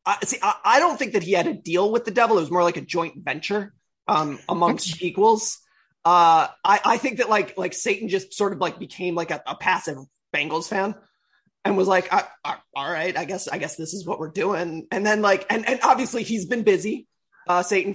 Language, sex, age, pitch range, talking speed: English, male, 20-39, 160-205 Hz, 235 wpm